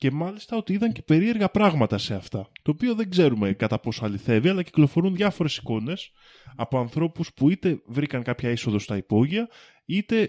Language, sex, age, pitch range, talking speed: Greek, male, 20-39, 120-175 Hz, 175 wpm